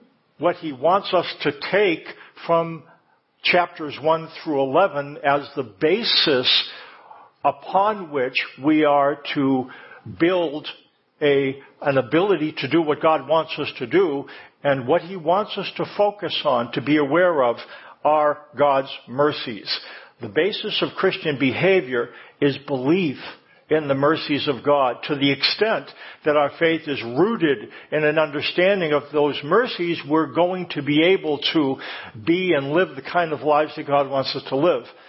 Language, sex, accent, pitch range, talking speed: English, male, American, 145-175 Hz, 155 wpm